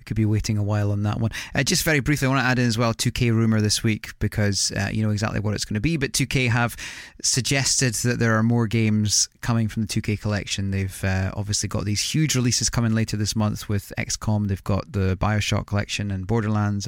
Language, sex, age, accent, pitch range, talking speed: English, male, 20-39, British, 105-125 Hz, 240 wpm